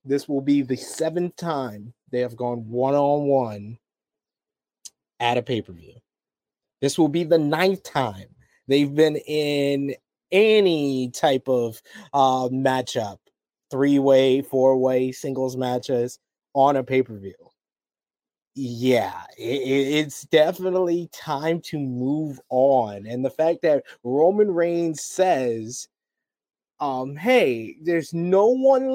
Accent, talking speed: American, 110 wpm